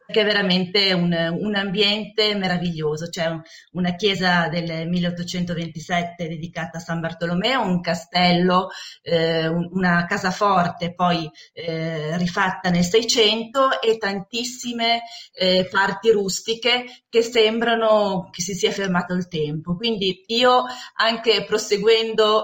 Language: Italian